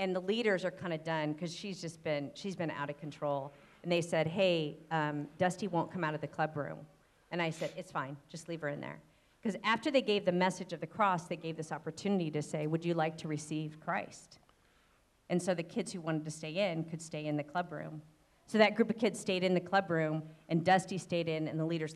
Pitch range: 155-195 Hz